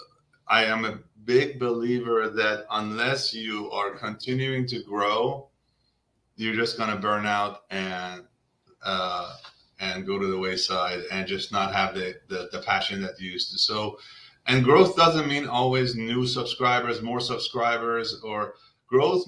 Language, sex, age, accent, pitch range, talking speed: English, male, 30-49, American, 110-130 Hz, 150 wpm